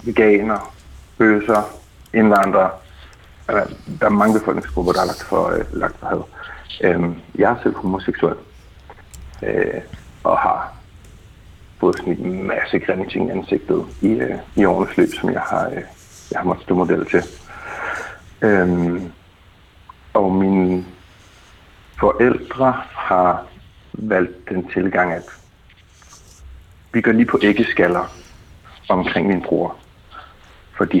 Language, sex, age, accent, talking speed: Danish, male, 60-79, native, 120 wpm